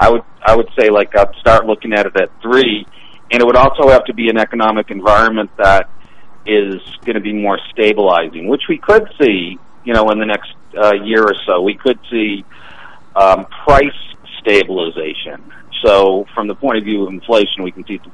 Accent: American